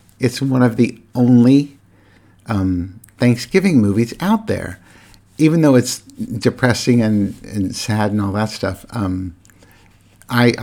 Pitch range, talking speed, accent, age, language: 95-120 Hz, 130 wpm, American, 50-69, English